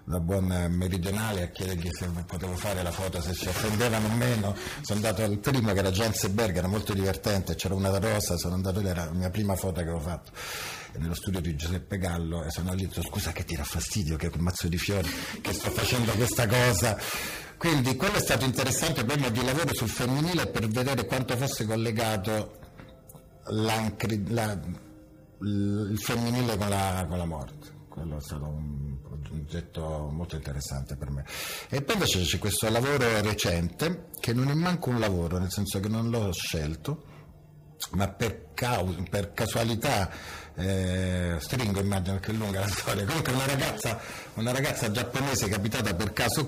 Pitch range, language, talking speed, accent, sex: 90-115 Hz, Italian, 180 wpm, native, male